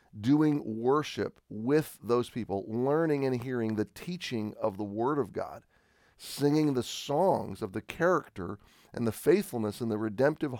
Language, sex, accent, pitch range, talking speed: English, male, American, 110-140 Hz, 155 wpm